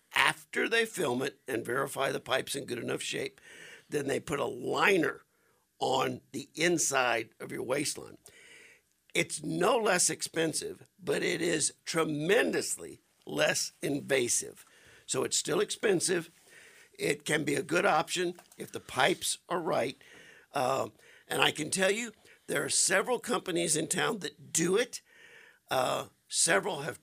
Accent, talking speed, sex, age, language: American, 145 wpm, male, 60-79, English